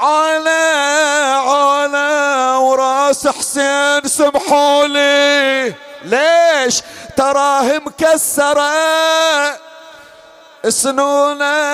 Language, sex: Arabic, male